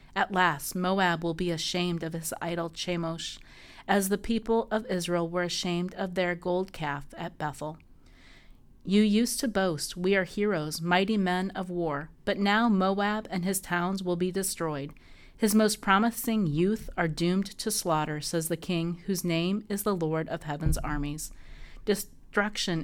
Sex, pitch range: female, 155-195 Hz